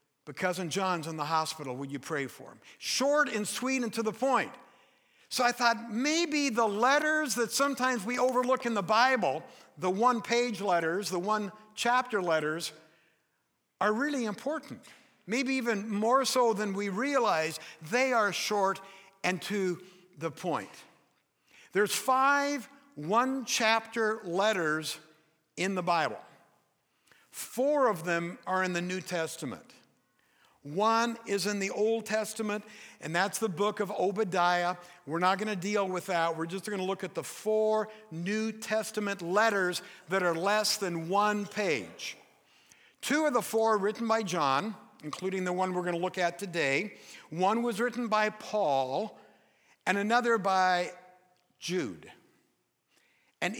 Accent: American